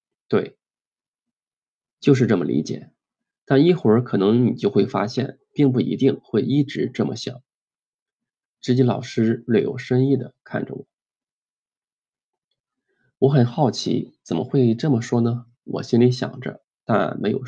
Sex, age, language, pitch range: male, 20-39, Chinese, 120-140 Hz